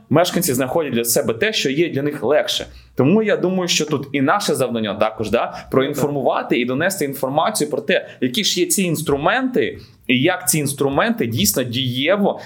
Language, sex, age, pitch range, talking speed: Ukrainian, male, 20-39, 130-180 Hz, 180 wpm